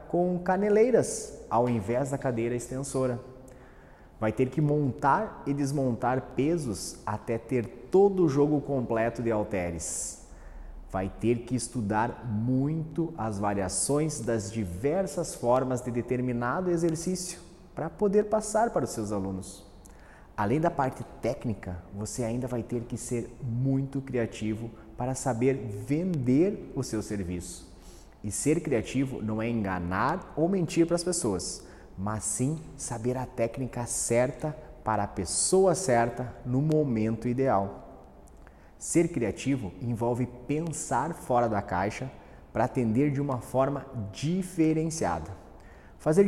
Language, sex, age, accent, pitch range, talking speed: Portuguese, male, 30-49, Brazilian, 105-155 Hz, 125 wpm